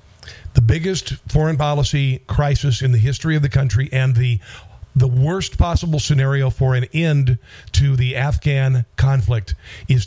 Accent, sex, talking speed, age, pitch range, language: American, male, 150 wpm, 50-69, 115-150 Hz, English